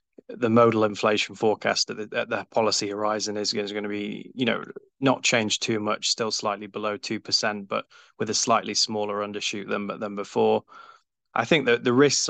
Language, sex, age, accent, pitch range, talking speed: English, male, 20-39, British, 105-115 Hz, 190 wpm